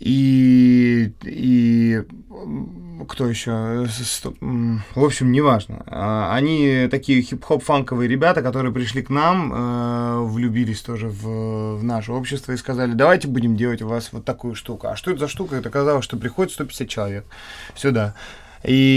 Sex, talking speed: male, 140 wpm